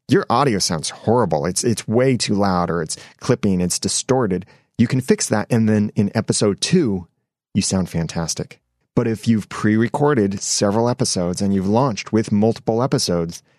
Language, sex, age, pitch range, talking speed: English, male, 30-49, 100-130 Hz, 170 wpm